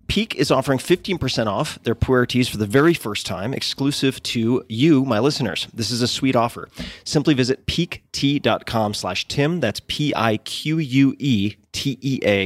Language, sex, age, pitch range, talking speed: English, male, 30-49, 95-135 Hz, 140 wpm